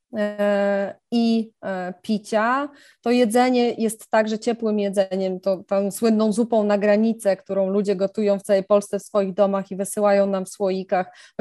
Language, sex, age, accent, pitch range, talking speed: Polish, female, 20-39, native, 190-220 Hz, 155 wpm